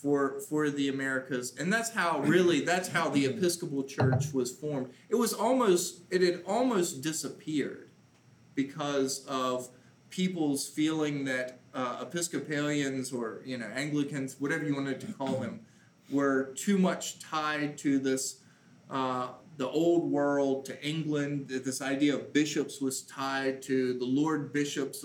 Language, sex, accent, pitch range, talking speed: English, male, American, 130-150 Hz, 150 wpm